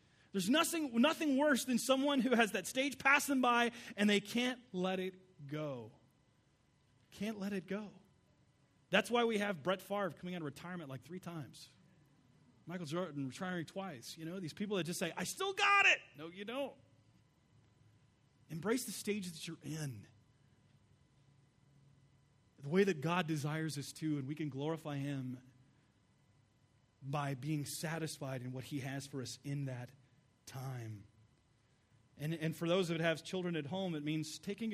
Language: English